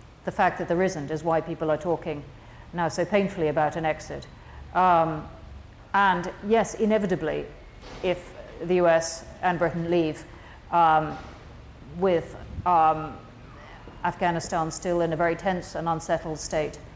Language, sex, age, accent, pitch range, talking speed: English, female, 50-69, British, 160-185 Hz, 135 wpm